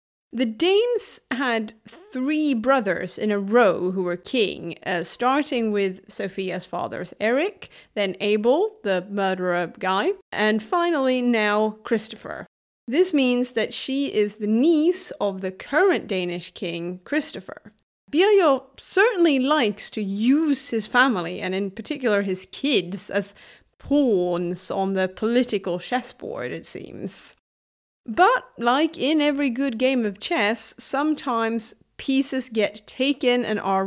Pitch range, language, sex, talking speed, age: 200-285 Hz, English, female, 130 wpm, 30-49